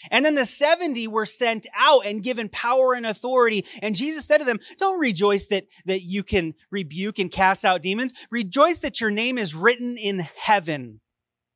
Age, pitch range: 30-49, 145-230 Hz